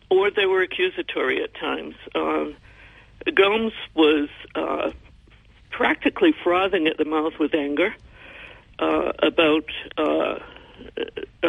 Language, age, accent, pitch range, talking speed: English, 60-79, American, 150-205 Hz, 105 wpm